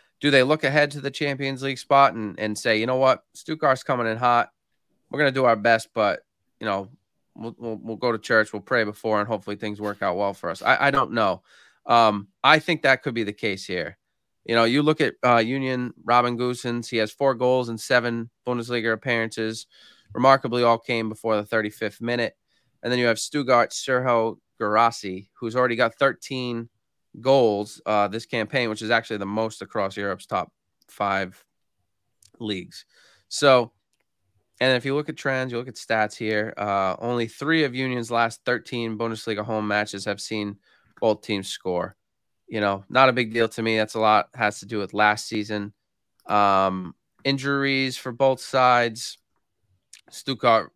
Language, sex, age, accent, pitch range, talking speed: English, male, 20-39, American, 105-125 Hz, 185 wpm